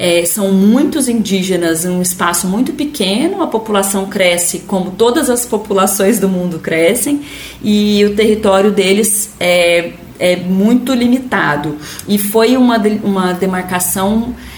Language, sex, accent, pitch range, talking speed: Portuguese, female, Brazilian, 190-230 Hz, 130 wpm